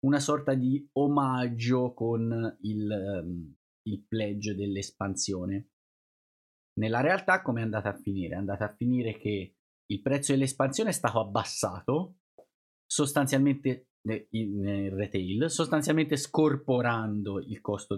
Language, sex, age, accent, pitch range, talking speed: Italian, male, 30-49, native, 100-130 Hz, 115 wpm